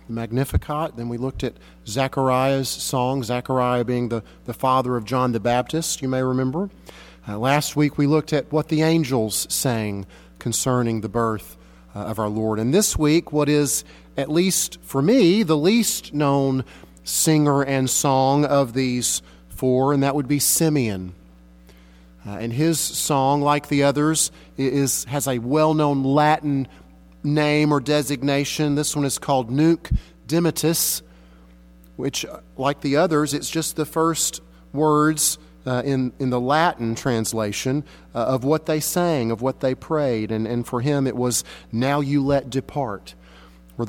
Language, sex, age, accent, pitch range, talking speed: English, male, 40-59, American, 110-150 Hz, 155 wpm